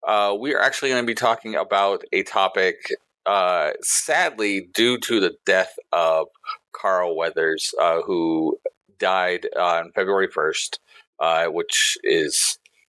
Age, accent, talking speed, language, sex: 40-59, American, 140 wpm, English, male